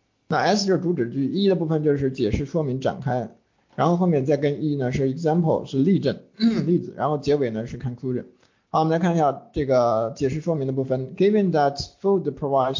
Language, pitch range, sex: Chinese, 125-160 Hz, male